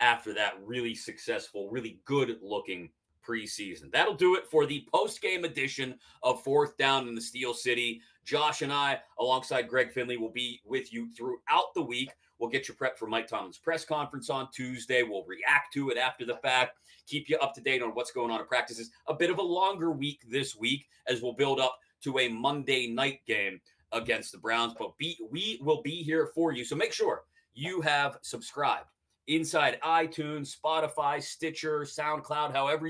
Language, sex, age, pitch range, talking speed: English, male, 30-49, 125-160 Hz, 185 wpm